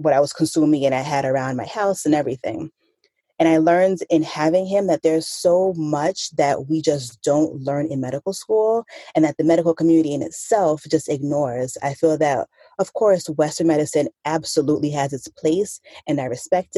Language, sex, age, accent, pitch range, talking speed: English, female, 30-49, American, 145-175 Hz, 190 wpm